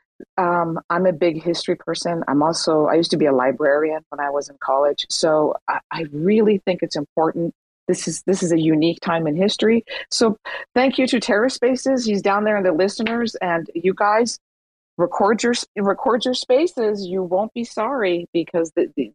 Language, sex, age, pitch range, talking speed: English, female, 40-59, 145-185 Hz, 190 wpm